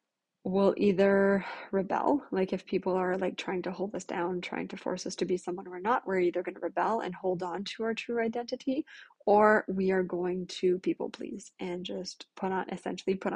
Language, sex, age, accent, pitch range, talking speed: English, female, 20-39, American, 180-210 Hz, 210 wpm